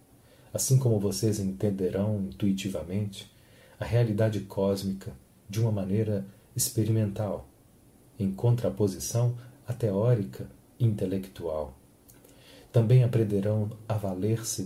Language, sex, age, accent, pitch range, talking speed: Portuguese, male, 40-59, Brazilian, 100-125 Hz, 90 wpm